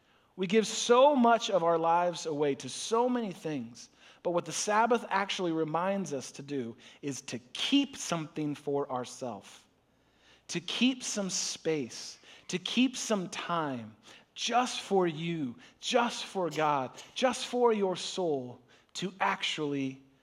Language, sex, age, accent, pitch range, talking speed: English, male, 40-59, American, 155-200 Hz, 140 wpm